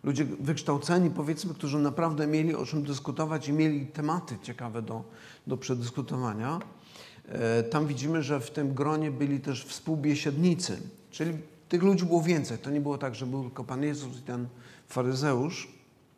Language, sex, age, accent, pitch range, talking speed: Polish, male, 50-69, native, 125-165 Hz, 155 wpm